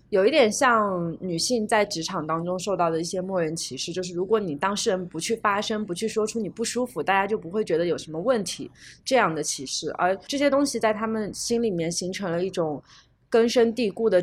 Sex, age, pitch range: female, 20-39, 165-215 Hz